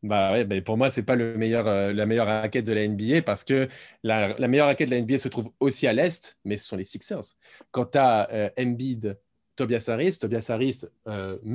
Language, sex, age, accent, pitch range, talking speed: French, male, 30-49, French, 110-135 Hz, 210 wpm